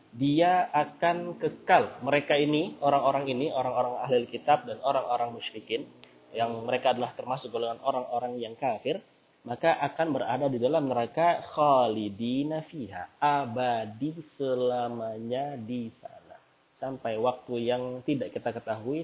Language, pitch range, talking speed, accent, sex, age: Indonesian, 115-145 Hz, 120 wpm, native, male, 20-39